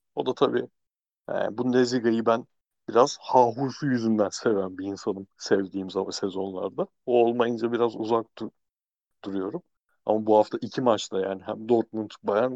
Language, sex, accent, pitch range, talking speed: Turkish, male, native, 105-120 Hz, 150 wpm